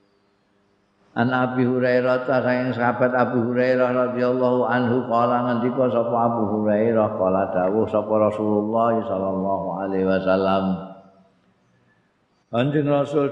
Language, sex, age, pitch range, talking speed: Indonesian, male, 50-69, 100-135 Hz, 105 wpm